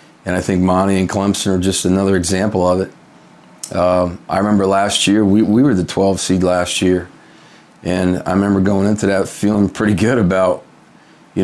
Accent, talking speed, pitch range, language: American, 190 wpm, 95-110 Hz, English